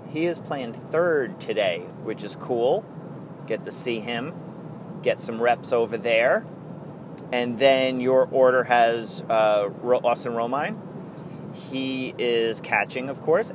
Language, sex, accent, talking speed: English, male, American, 135 wpm